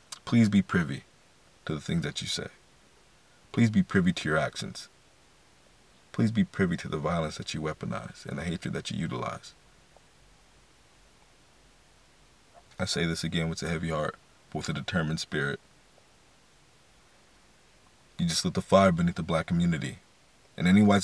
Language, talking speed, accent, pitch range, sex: English, 155 wpm, American, 95-115 Hz, male